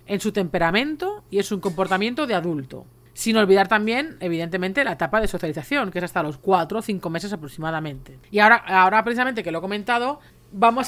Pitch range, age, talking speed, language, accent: 185-240 Hz, 40-59, 195 wpm, Spanish, Spanish